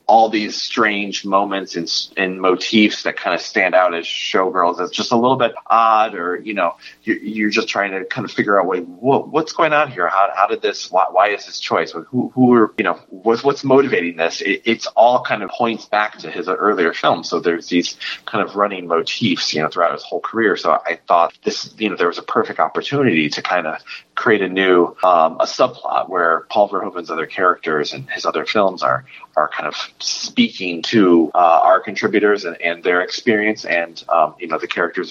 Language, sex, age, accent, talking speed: English, male, 30-49, American, 215 wpm